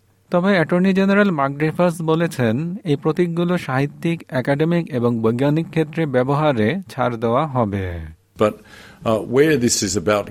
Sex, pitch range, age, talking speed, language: male, 95-155 Hz, 50-69, 110 wpm, Bengali